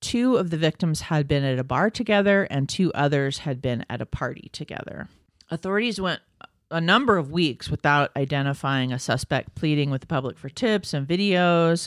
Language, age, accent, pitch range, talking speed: English, 40-59, American, 135-170 Hz, 185 wpm